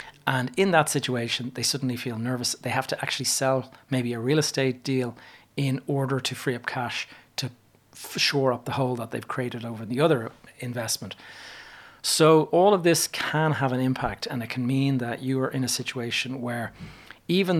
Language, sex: English, male